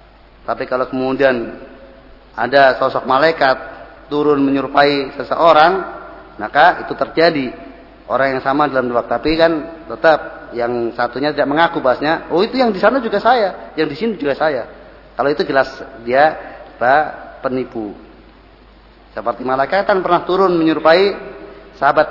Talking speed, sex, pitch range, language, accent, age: 135 wpm, male, 135-190 Hz, Indonesian, native, 30-49